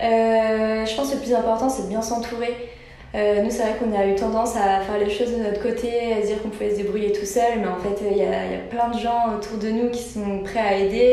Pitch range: 190-220 Hz